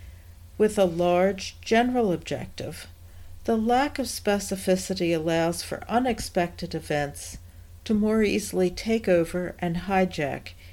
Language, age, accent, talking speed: English, 60-79, American, 110 wpm